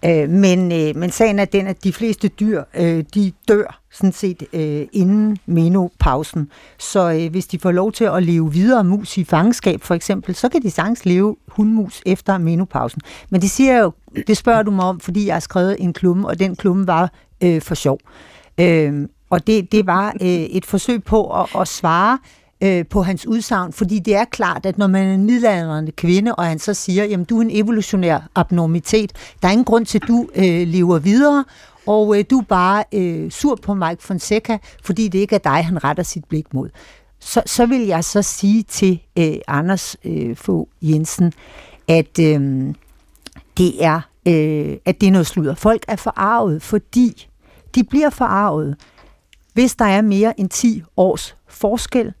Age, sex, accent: 60-79, female, native